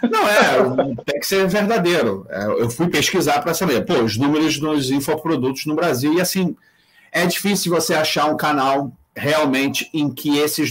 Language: Portuguese